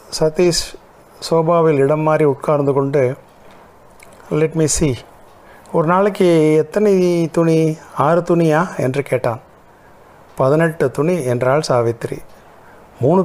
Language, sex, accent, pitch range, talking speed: Tamil, male, native, 140-165 Hz, 100 wpm